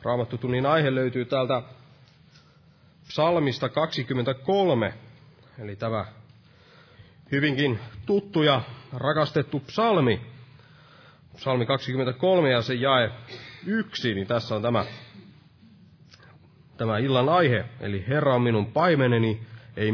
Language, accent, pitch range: Finnish, native, 120-145 Hz